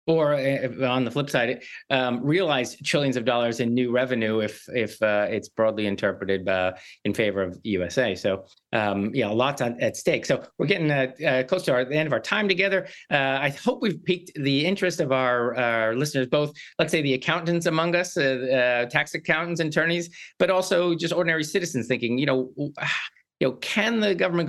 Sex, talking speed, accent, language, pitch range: male, 200 wpm, American, English, 125-170 Hz